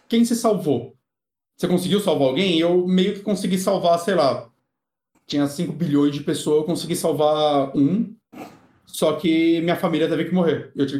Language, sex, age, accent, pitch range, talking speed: Portuguese, male, 30-49, Brazilian, 155-250 Hz, 175 wpm